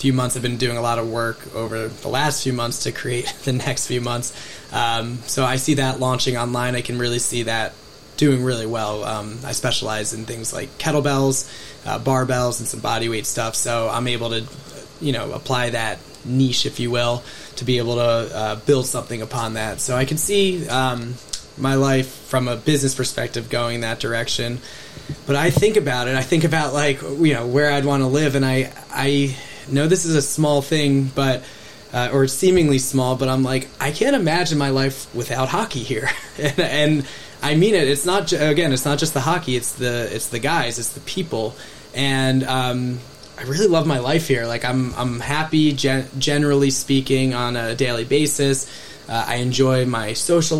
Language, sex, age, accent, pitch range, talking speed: Finnish, male, 20-39, American, 120-145 Hz, 200 wpm